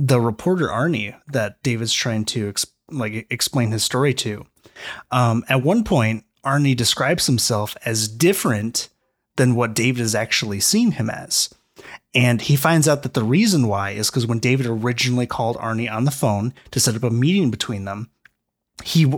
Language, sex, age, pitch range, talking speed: English, male, 30-49, 115-140 Hz, 175 wpm